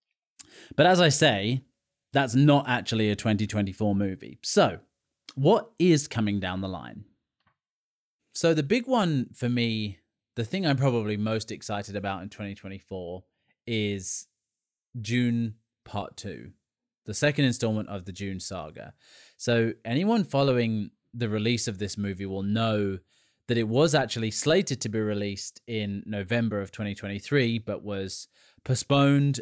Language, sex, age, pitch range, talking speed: English, male, 30-49, 100-125 Hz, 140 wpm